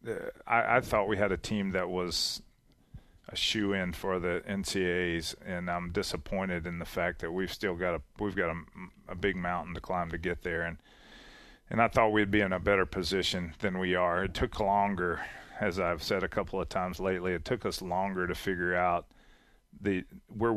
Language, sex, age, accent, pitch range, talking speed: English, male, 40-59, American, 90-105 Hz, 205 wpm